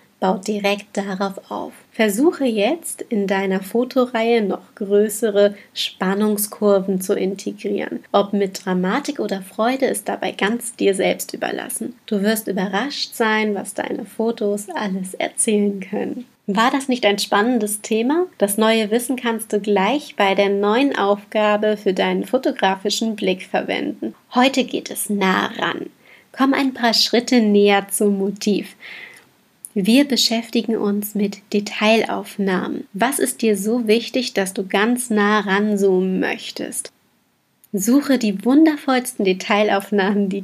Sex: female